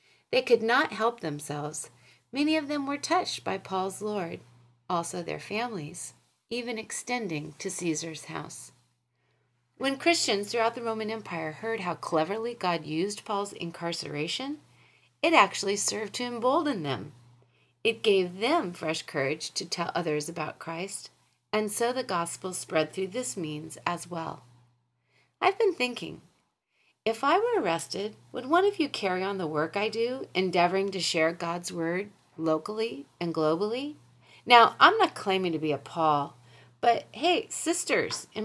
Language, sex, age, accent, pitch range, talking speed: English, female, 40-59, American, 155-240 Hz, 150 wpm